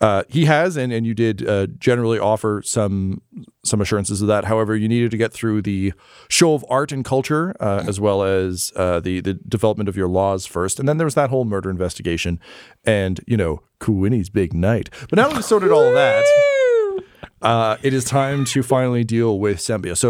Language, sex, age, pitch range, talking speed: English, male, 40-59, 100-130 Hz, 210 wpm